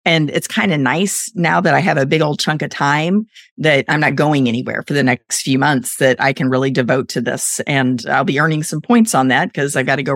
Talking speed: 265 wpm